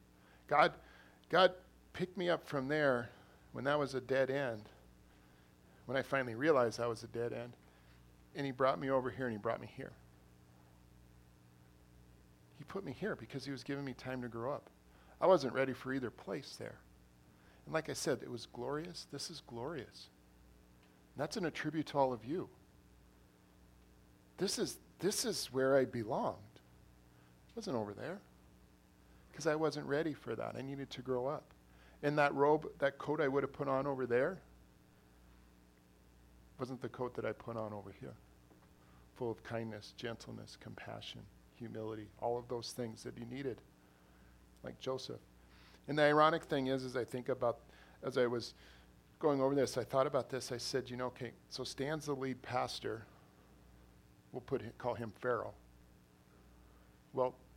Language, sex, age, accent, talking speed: English, male, 40-59, American, 170 wpm